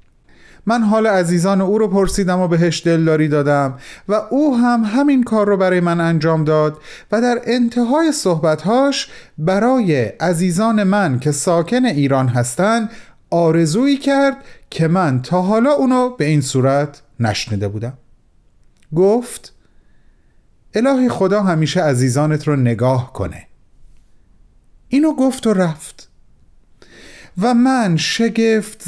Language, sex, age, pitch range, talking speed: Persian, male, 30-49, 150-225 Hz, 120 wpm